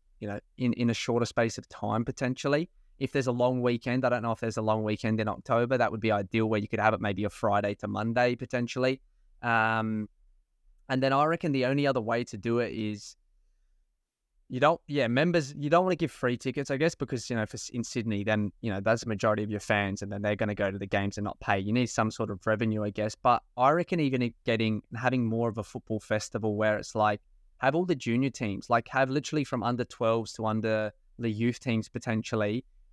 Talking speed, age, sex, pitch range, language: 240 wpm, 20-39, male, 105-125 Hz, English